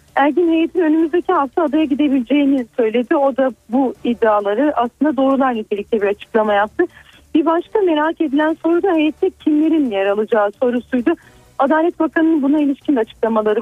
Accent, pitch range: native, 235-310 Hz